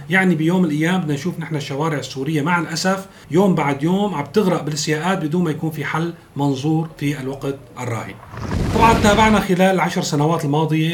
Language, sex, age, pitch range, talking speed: Arabic, male, 40-59, 140-170 Hz, 165 wpm